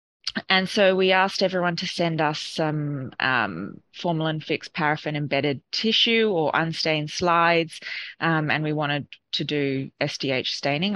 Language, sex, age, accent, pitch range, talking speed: English, female, 20-39, Australian, 150-175 Hz, 130 wpm